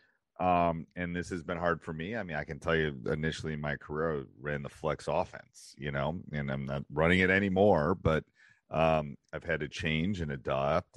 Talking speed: 215 wpm